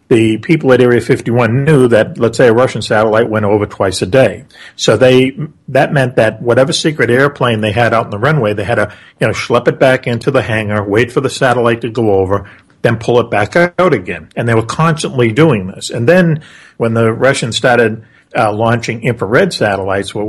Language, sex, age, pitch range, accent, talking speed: English, male, 50-69, 110-135 Hz, American, 215 wpm